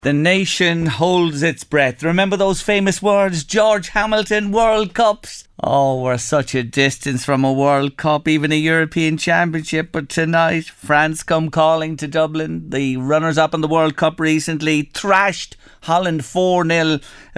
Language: English